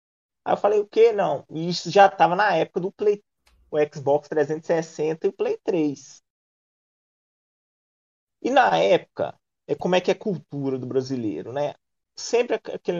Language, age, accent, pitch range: Portuguese, 20-39, Brazilian, 150-195 Hz